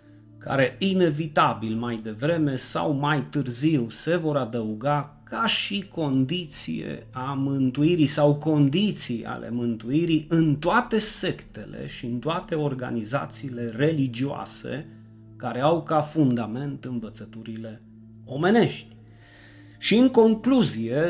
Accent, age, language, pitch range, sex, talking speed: native, 30-49, Romanian, 110-160 Hz, male, 100 wpm